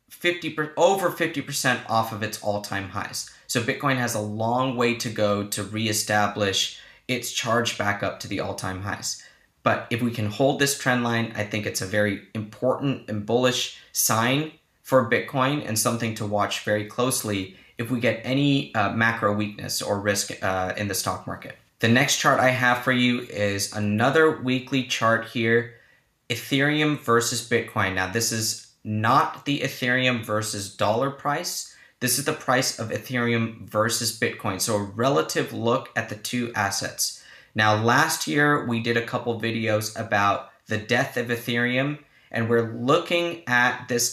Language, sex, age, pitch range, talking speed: English, male, 20-39, 105-130 Hz, 165 wpm